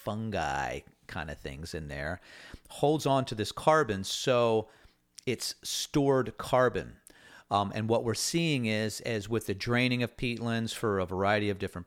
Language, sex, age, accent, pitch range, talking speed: English, male, 40-59, American, 100-120 Hz, 160 wpm